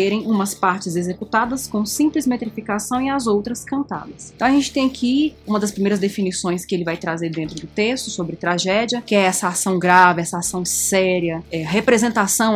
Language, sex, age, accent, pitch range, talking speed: Portuguese, female, 20-39, Brazilian, 185-250 Hz, 185 wpm